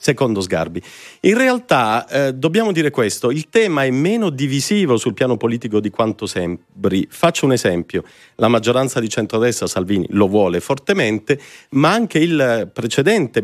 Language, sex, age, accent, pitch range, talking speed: Italian, male, 40-59, native, 105-150 Hz, 150 wpm